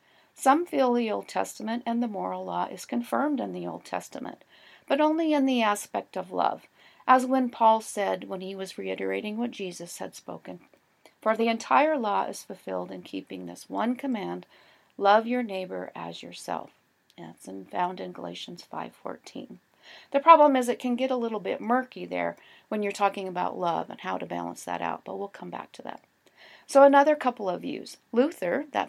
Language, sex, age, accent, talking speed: English, female, 40-59, American, 185 wpm